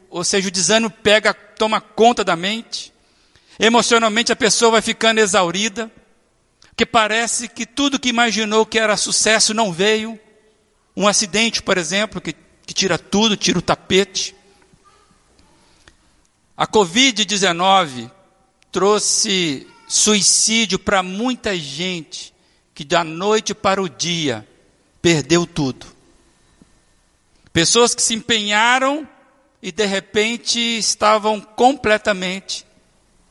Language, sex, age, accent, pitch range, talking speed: Portuguese, male, 60-79, Brazilian, 170-225 Hz, 110 wpm